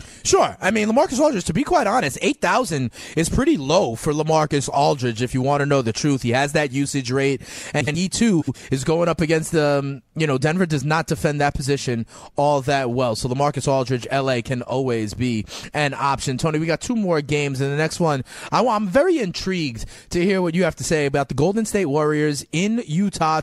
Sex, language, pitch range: male, English, 140-190 Hz